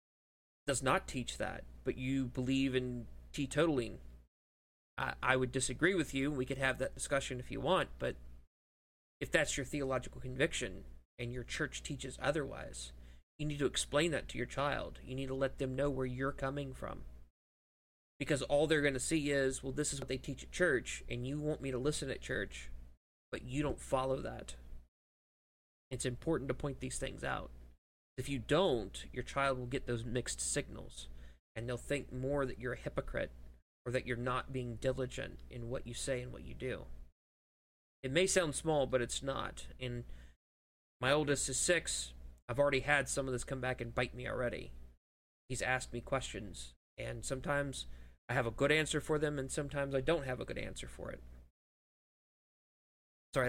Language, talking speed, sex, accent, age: English, 185 wpm, male, American, 20-39